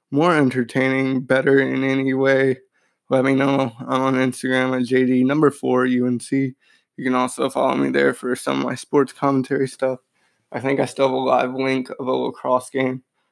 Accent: American